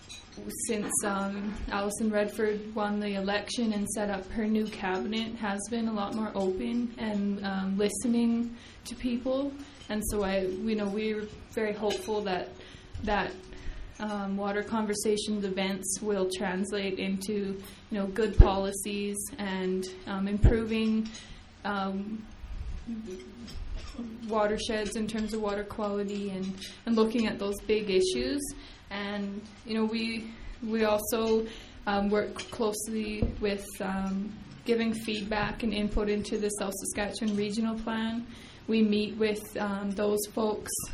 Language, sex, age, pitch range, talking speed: English, female, 20-39, 195-220 Hz, 130 wpm